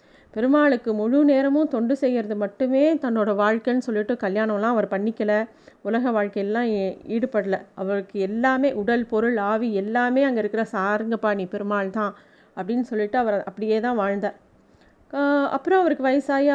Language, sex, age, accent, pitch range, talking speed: Tamil, female, 30-49, native, 210-255 Hz, 125 wpm